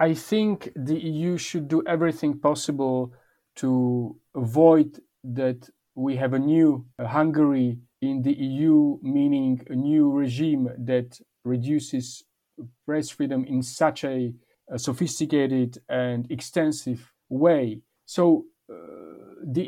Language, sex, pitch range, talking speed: Polish, male, 125-155 Hz, 115 wpm